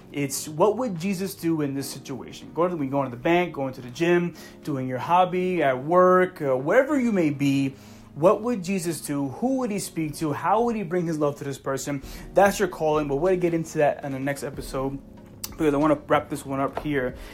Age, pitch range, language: 30-49, 145-180 Hz, English